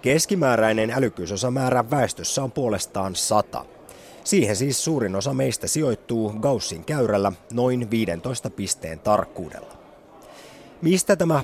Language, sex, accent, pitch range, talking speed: Finnish, male, native, 95-135 Hz, 105 wpm